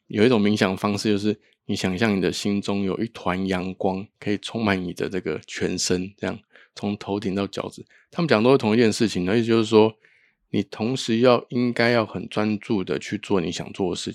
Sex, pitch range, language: male, 95-115 Hz, Chinese